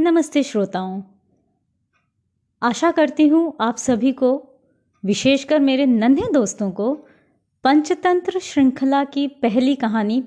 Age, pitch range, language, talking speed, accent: 20-39, 215-295 Hz, Hindi, 105 wpm, native